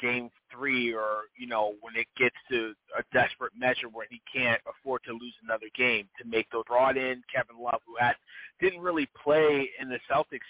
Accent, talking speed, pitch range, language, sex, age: American, 200 wpm, 125-155 Hz, English, male, 30-49